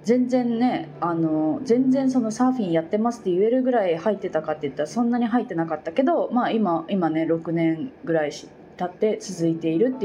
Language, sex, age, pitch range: Japanese, female, 20-39, 170-260 Hz